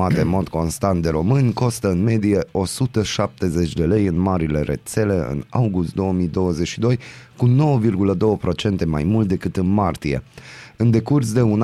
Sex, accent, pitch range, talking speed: male, native, 85-115 Hz, 145 wpm